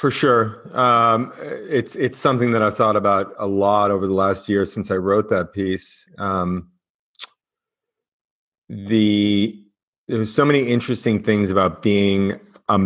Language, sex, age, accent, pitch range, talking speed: English, male, 30-49, American, 90-105 Hz, 150 wpm